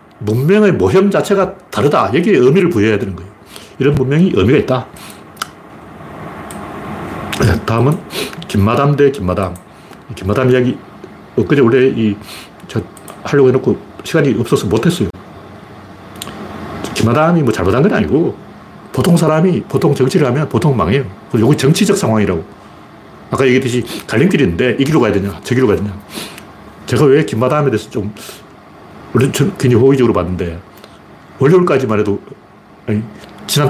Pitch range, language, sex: 105-150 Hz, Korean, male